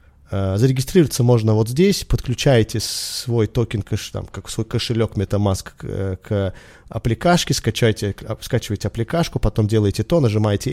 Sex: male